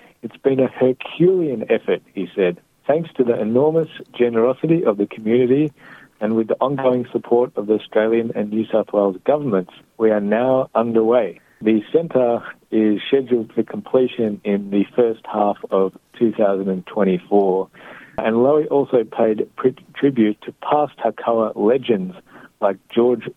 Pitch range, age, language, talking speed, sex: 110-135 Hz, 50-69, Hebrew, 140 wpm, male